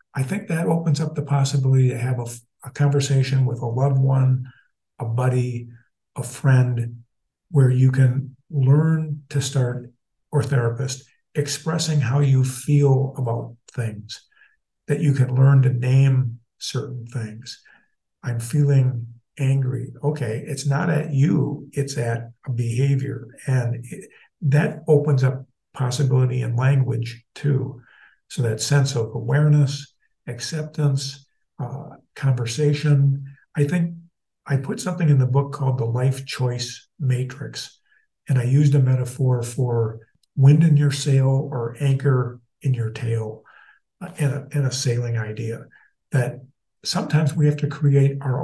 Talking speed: 140 wpm